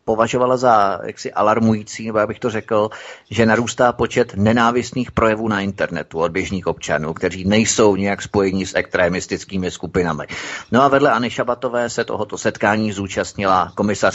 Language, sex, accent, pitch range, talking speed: Czech, male, native, 100-120 Hz, 150 wpm